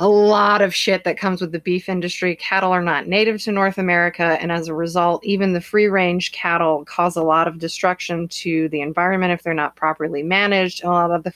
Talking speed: 225 wpm